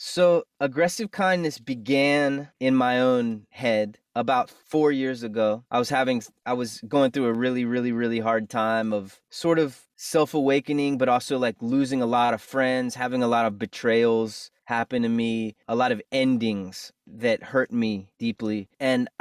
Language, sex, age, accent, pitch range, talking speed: English, male, 20-39, American, 115-140 Hz, 170 wpm